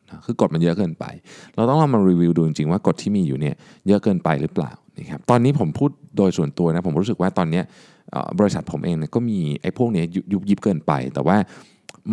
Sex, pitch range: male, 85-115 Hz